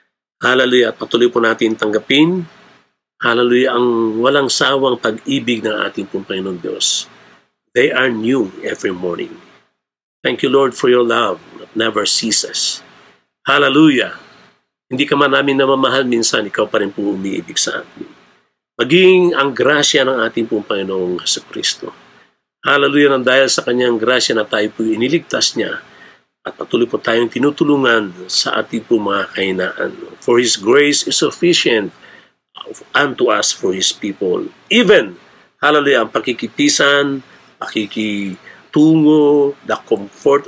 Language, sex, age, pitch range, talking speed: Filipino, male, 50-69, 110-145 Hz, 125 wpm